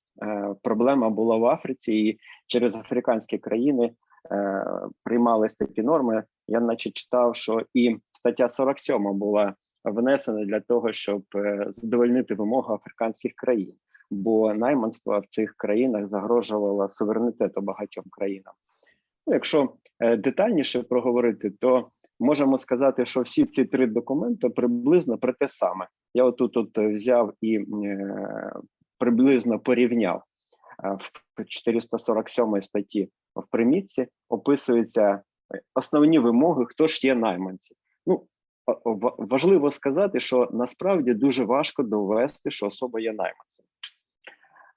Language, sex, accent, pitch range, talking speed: Ukrainian, male, native, 105-125 Hz, 115 wpm